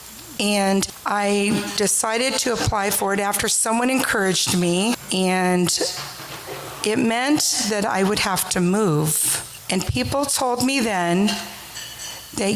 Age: 40-59